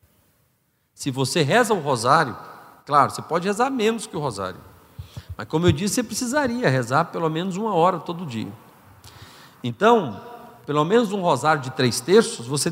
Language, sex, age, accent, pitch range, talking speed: Portuguese, male, 50-69, Brazilian, 145-235 Hz, 165 wpm